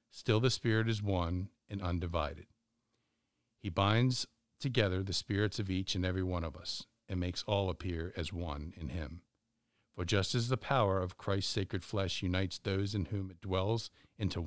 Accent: American